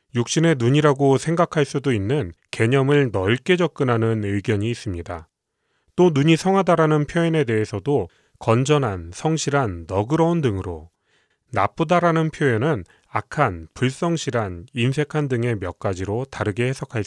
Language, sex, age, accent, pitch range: Korean, male, 30-49, native, 110-155 Hz